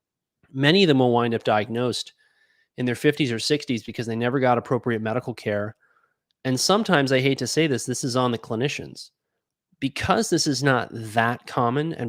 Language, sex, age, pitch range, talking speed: English, male, 30-49, 110-135 Hz, 190 wpm